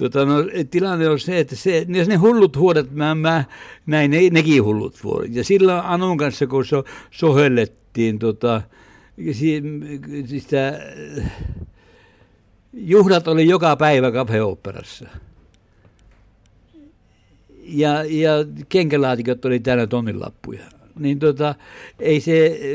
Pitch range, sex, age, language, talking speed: 110-150 Hz, male, 60-79, Finnish, 110 wpm